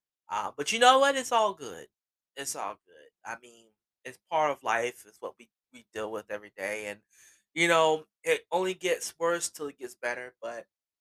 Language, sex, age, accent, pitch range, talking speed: English, male, 20-39, American, 130-175 Hz, 200 wpm